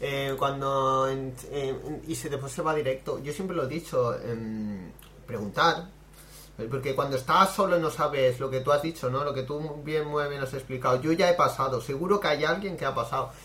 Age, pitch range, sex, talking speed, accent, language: 30-49, 125-150 Hz, male, 210 wpm, Spanish, Spanish